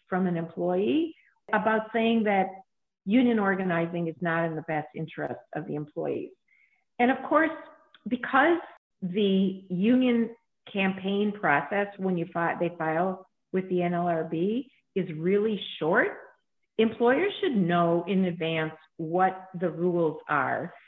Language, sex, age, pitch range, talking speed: English, female, 50-69, 170-205 Hz, 130 wpm